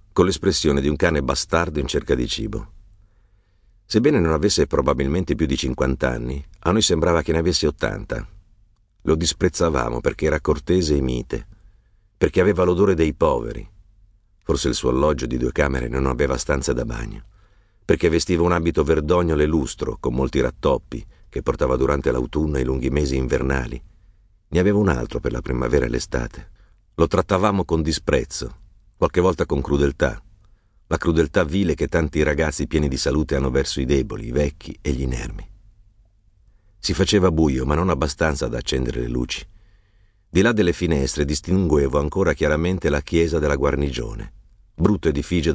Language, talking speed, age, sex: Italian, 165 wpm, 50-69, male